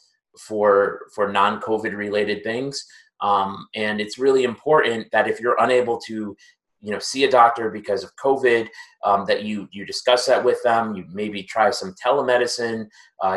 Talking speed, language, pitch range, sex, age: 160 wpm, English, 105-135 Hz, male, 30-49